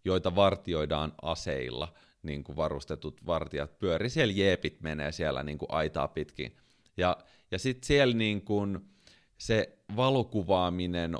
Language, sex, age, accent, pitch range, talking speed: Finnish, male, 30-49, native, 80-105 Hz, 130 wpm